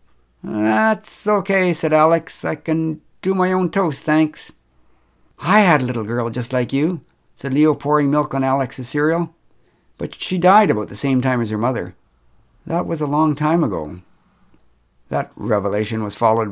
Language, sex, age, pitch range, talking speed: English, male, 60-79, 100-150 Hz, 165 wpm